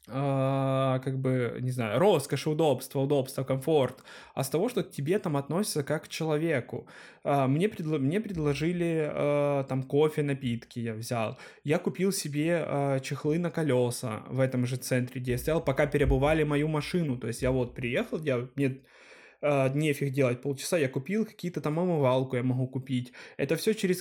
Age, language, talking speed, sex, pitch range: 20-39, Ukrainian, 175 wpm, male, 140-175 Hz